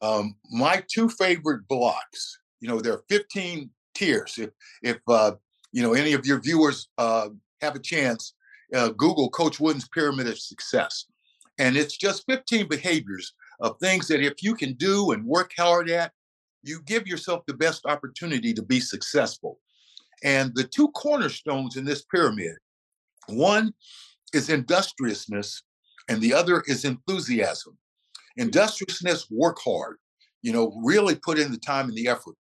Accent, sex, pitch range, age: American, male, 125-190 Hz, 60-79